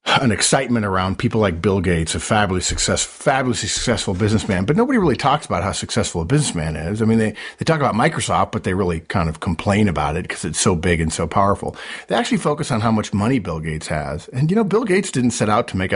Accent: American